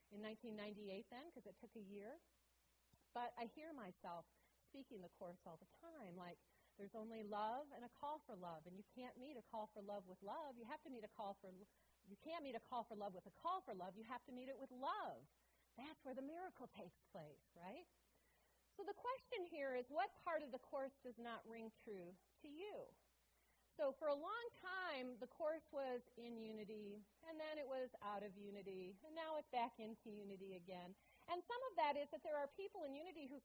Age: 40-59